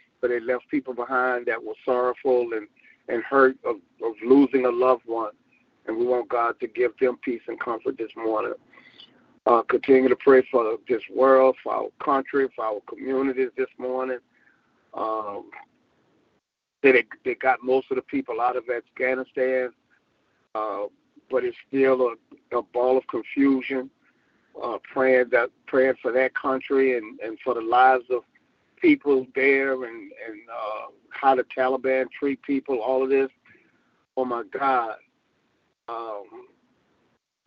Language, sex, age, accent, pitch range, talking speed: English, male, 50-69, American, 125-135 Hz, 145 wpm